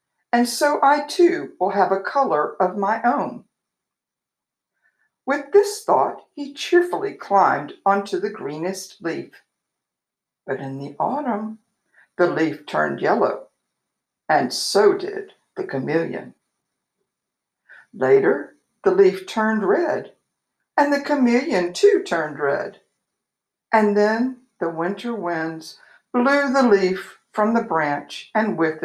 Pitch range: 175-290 Hz